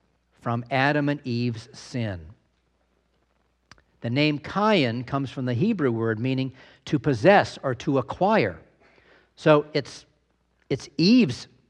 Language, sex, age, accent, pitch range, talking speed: English, male, 50-69, American, 120-160 Hz, 120 wpm